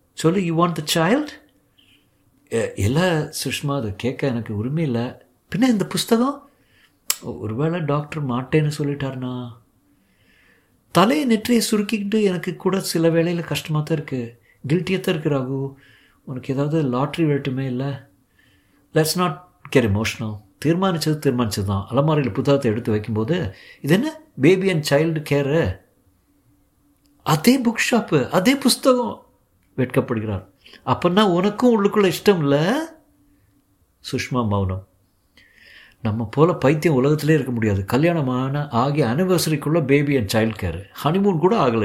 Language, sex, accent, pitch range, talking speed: Tamil, male, native, 105-165 Hz, 110 wpm